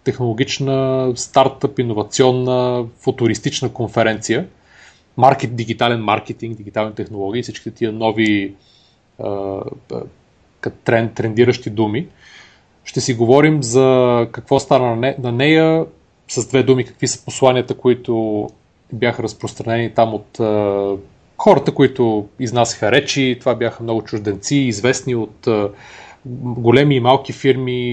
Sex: male